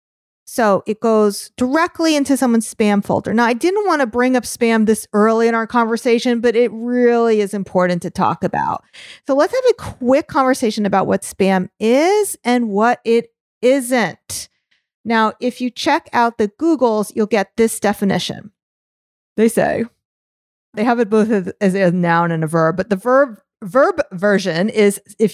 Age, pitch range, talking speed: 40-59, 205-275 Hz, 175 wpm